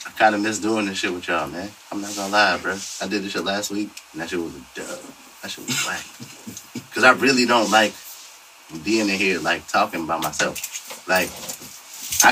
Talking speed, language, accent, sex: 215 wpm, English, American, male